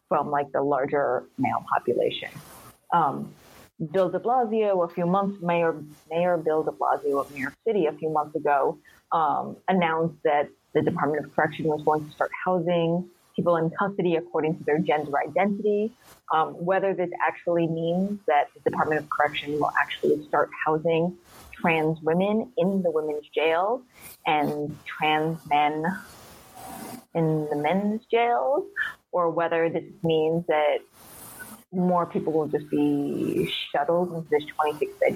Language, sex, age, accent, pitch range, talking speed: English, female, 30-49, American, 155-190 Hz, 150 wpm